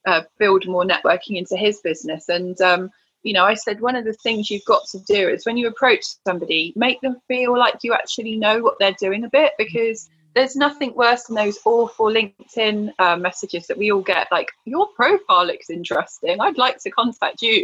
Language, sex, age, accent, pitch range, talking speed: English, female, 20-39, British, 195-260 Hz, 210 wpm